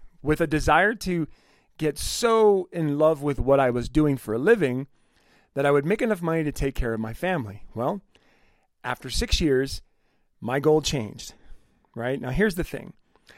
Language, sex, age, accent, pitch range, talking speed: English, male, 40-59, American, 120-160 Hz, 180 wpm